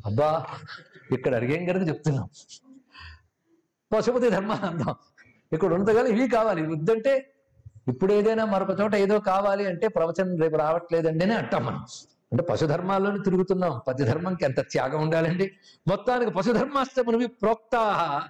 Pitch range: 170-240 Hz